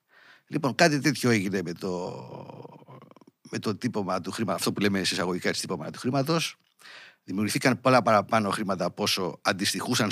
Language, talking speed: Greek, 150 wpm